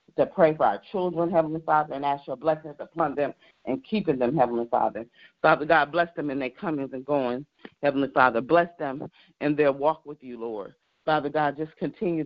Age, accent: 40-59, American